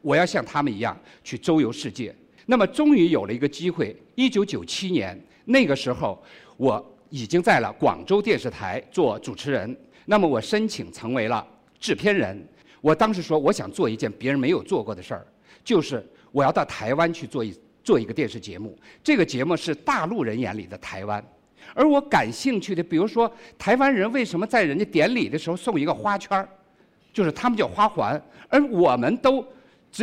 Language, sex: Chinese, male